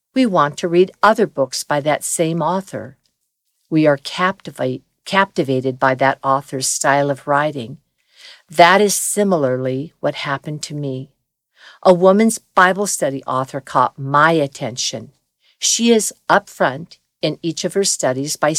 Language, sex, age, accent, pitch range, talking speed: English, female, 50-69, American, 140-185 Hz, 140 wpm